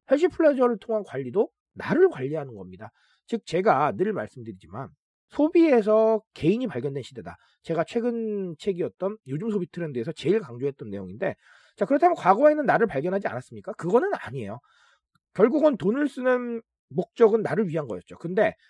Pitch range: 135-225 Hz